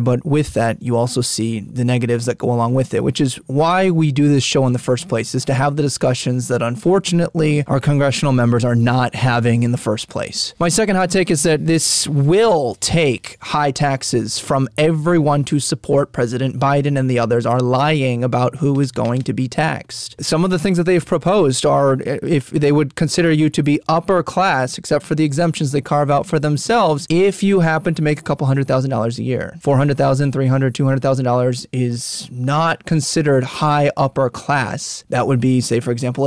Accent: American